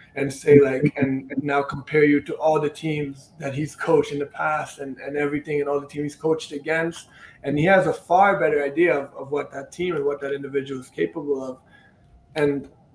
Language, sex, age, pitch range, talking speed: Hebrew, male, 20-39, 140-170 Hz, 220 wpm